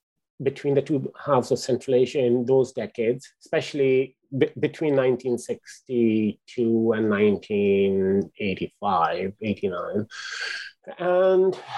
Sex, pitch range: male, 115-140 Hz